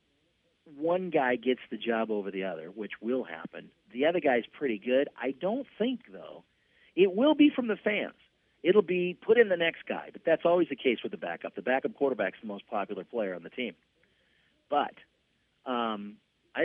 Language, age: English, 40-59